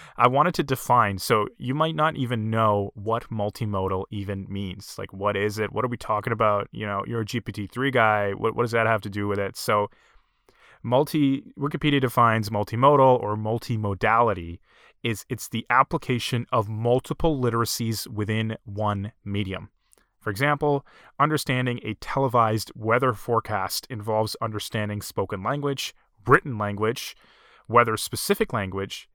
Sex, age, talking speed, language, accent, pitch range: male, 20-39, 145 wpm, English, American, 105-125 Hz